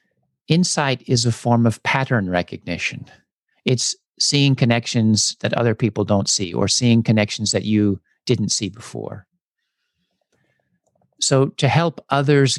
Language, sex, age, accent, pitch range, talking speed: English, male, 50-69, American, 110-130 Hz, 130 wpm